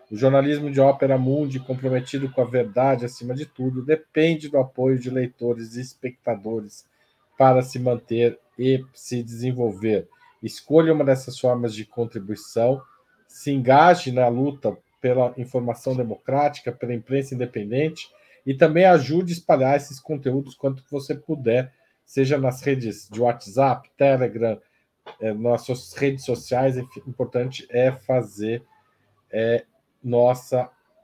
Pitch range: 120-145 Hz